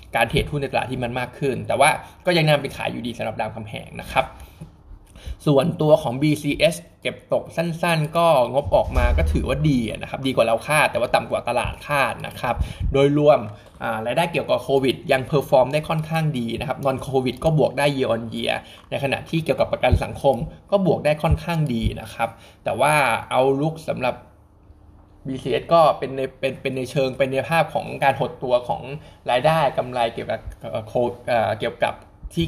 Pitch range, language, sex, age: 120-155 Hz, Thai, male, 20-39